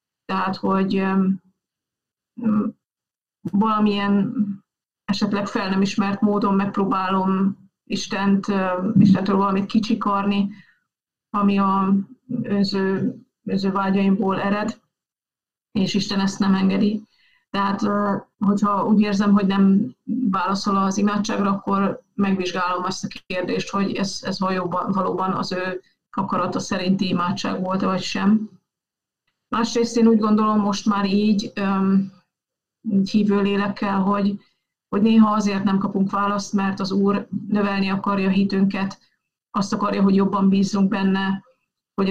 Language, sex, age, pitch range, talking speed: Hungarian, female, 30-49, 195-205 Hz, 115 wpm